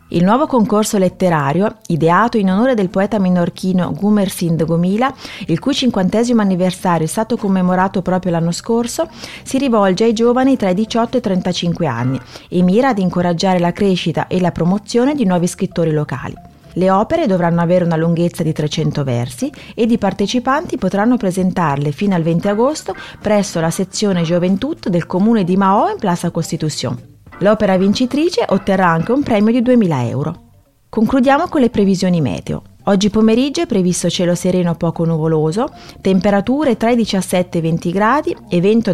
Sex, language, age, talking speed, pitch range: female, Italian, 30-49, 165 wpm, 175-220 Hz